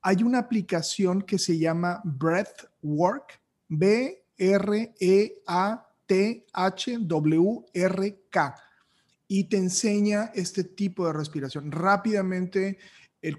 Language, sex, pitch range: Spanish, male, 160-200 Hz